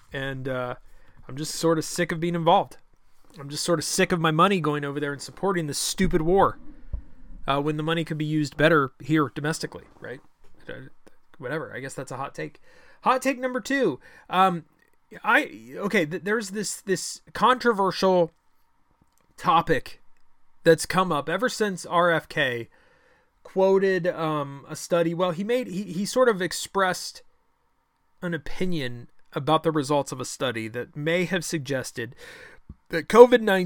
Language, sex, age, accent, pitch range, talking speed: English, male, 30-49, American, 135-185 Hz, 155 wpm